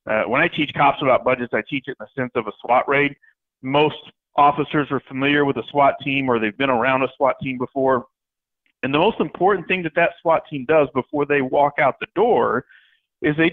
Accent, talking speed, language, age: American, 225 wpm, English, 40-59